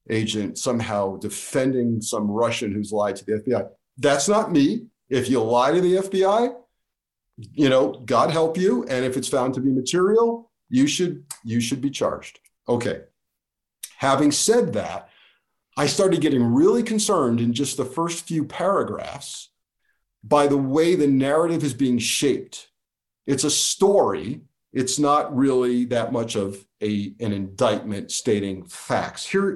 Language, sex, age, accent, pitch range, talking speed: English, male, 50-69, American, 120-175 Hz, 150 wpm